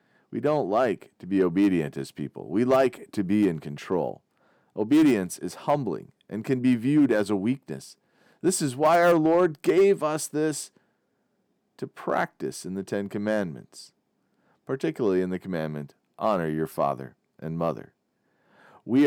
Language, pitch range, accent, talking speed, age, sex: English, 85-135 Hz, American, 150 wpm, 40-59, male